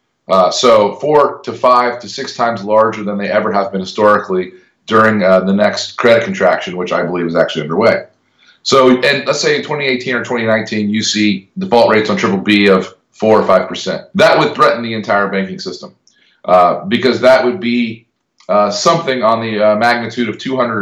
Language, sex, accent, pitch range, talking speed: English, male, American, 95-120 Hz, 195 wpm